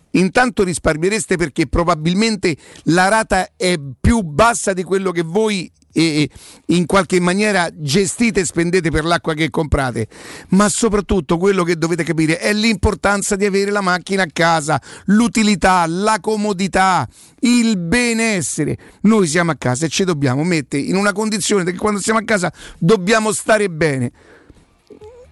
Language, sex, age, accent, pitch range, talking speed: Italian, male, 50-69, native, 165-205 Hz, 145 wpm